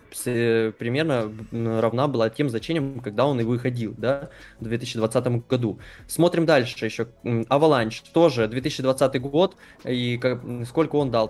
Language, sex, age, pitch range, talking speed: Russian, male, 20-39, 115-150 Hz, 135 wpm